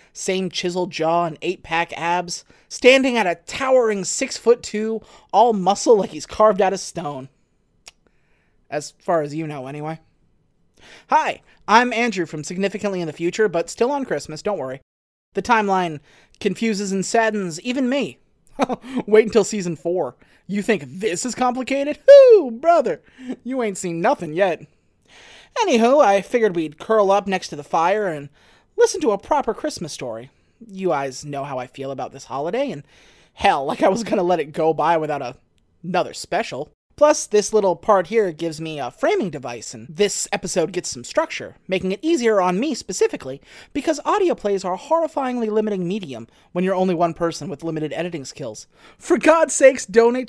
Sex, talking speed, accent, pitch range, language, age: male, 170 wpm, American, 165-230 Hz, English, 30-49